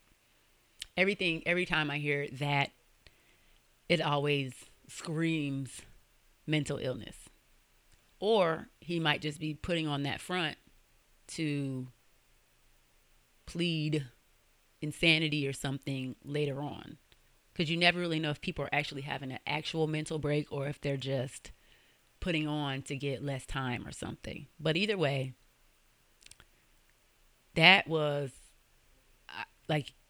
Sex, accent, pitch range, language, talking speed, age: female, American, 135-160 Hz, English, 120 wpm, 30-49